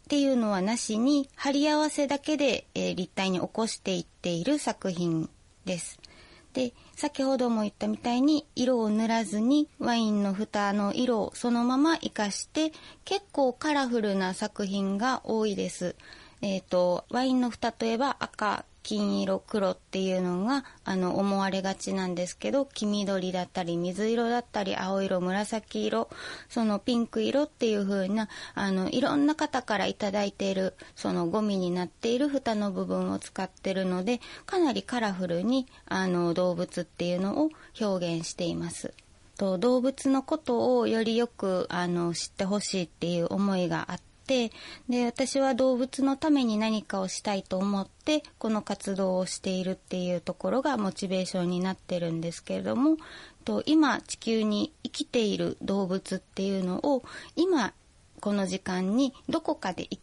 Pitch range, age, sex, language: 185-260 Hz, 20-39, female, Japanese